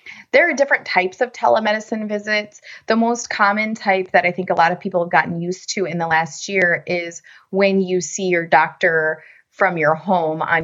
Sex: female